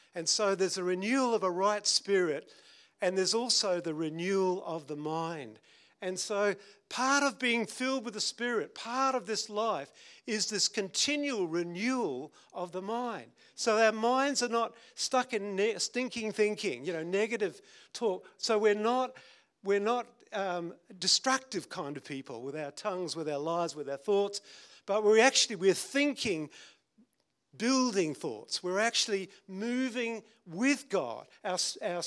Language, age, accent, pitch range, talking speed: English, 50-69, Australian, 185-240 Hz, 155 wpm